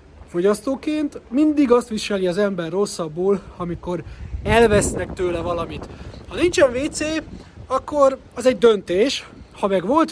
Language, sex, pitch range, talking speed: Hungarian, male, 180-240 Hz, 125 wpm